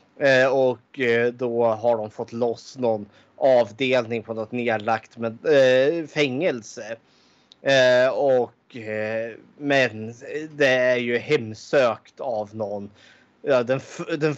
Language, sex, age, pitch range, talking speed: Swedish, male, 30-49, 115-150 Hz, 90 wpm